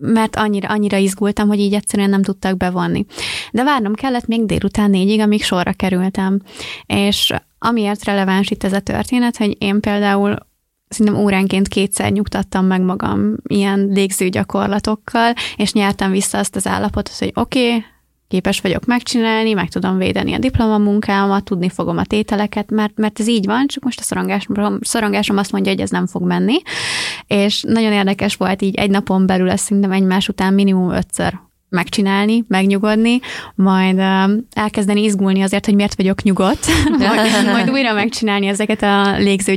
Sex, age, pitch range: female, 20-39, 195-215 Hz